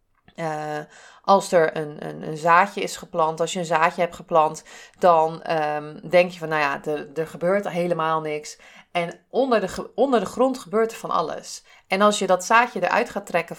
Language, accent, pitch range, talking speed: Dutch, Dutch, 155-195 Hz, 200 wpm